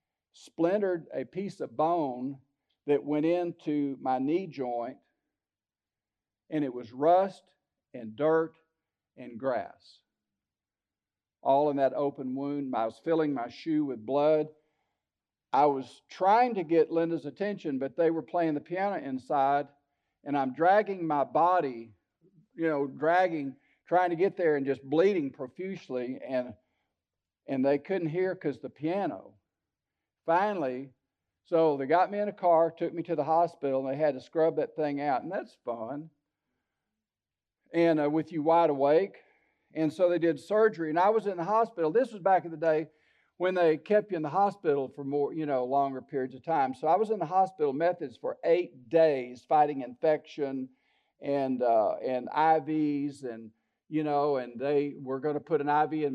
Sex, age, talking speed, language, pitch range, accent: male, 50-69, 170 wpm, English, 135-170 Hz, American